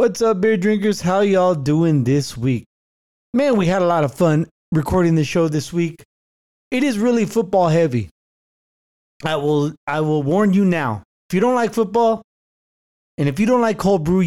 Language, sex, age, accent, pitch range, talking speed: English, male, 30-49, American, 150-200 Hz, 190 wpm